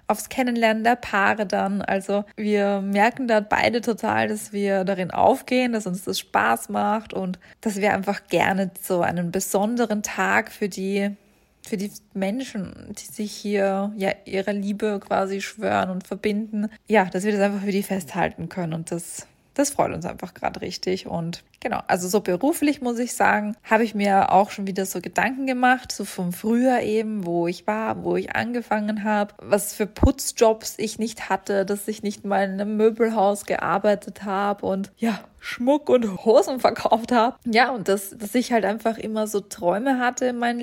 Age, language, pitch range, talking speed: 20-39, German, 195-220 Hz, 185 wpm